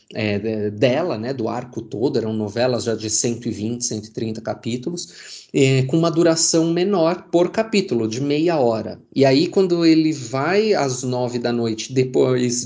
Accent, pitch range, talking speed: Brazilian, 120-165 Hz, 145 wpm